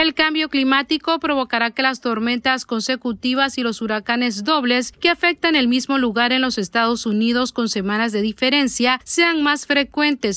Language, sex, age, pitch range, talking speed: Spanish, female, 40-59, 230-285 Hz, 160 wpm